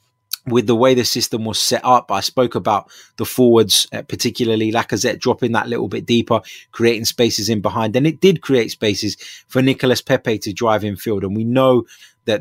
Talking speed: 190 wpm